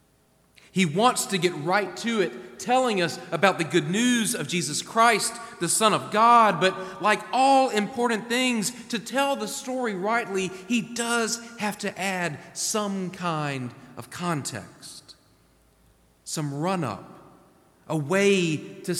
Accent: American